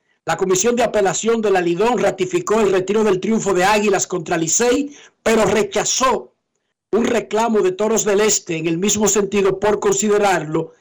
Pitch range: 190-230 Hz